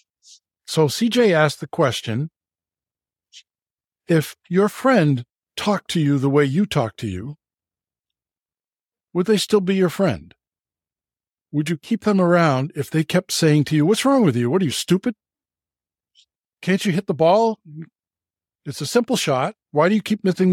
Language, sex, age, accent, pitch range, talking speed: English, male, 60-79, American, 130-185 Hz, 165 wpm